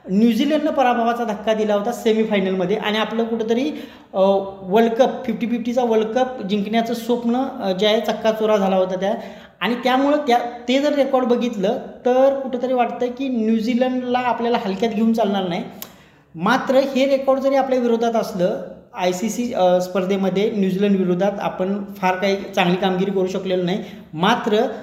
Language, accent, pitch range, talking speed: Marathi, native, 195-240 Hz, 150 wpm